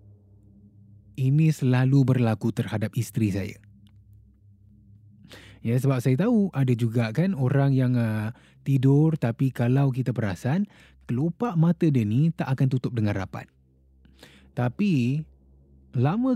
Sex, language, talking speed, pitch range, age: male, Malay, 115 wpm, 105-145 Hz, 20-39